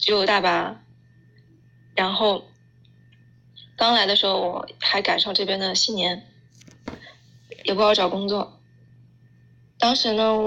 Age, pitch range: 20-39, 175-220 Hz